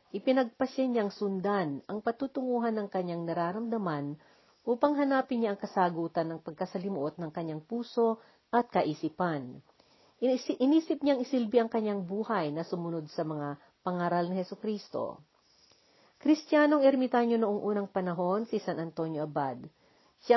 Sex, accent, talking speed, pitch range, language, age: female, native, 125 wpm, 175-235 Hz, Filipino, 40-59